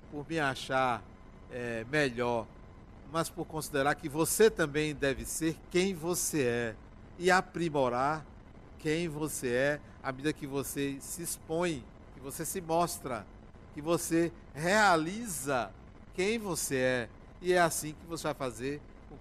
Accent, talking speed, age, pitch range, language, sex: Brazilian, 135 wpm, 60-79, 135-215 Hz, Portuguese, male